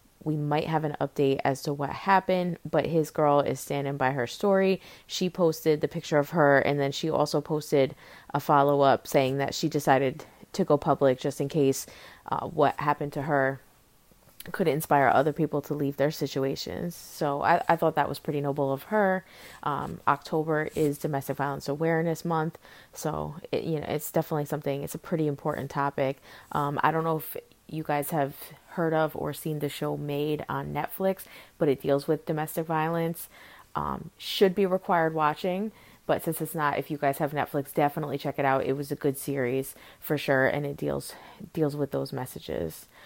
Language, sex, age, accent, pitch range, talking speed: English, female, 20-39, American, 140-160 Hz, 190 wpm